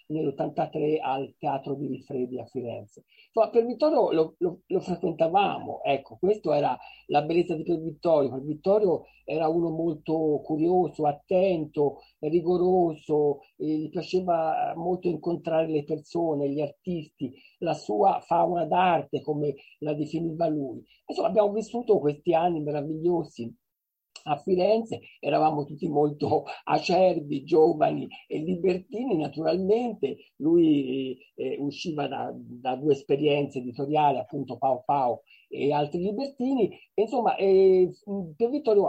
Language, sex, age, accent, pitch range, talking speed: Italian, male, 50-69, native, 145-185 Hz, 125 wpm